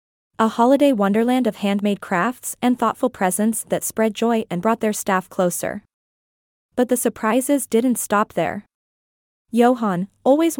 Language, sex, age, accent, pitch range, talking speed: English, female, 20-39, American, 200-245 Hz, 140 wpm